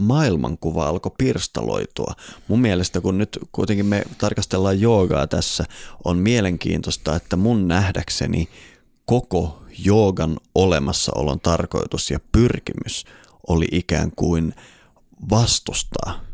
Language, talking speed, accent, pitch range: Finnish, 100 wpm, native, 80-100 Hz